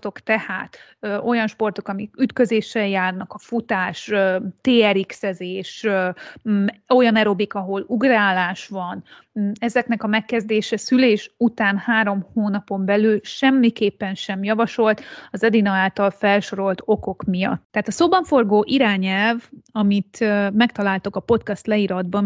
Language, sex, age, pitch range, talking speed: Hungarian, female, 30-49, 200-235 Hz, 110 wpm